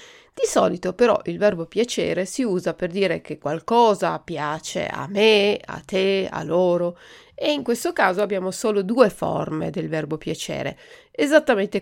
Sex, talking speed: female, 155 wpm